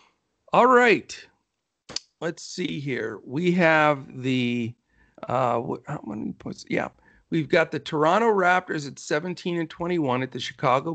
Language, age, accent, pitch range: English, 50-69, American, 130-165 Hz